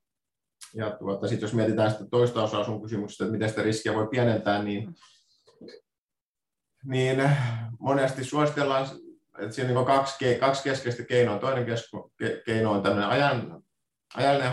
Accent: native